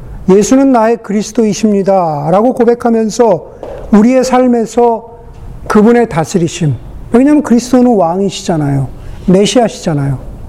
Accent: native